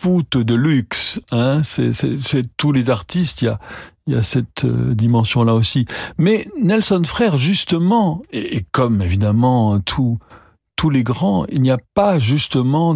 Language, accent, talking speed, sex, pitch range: French, French, 160 wpm, male, 115-150 Hz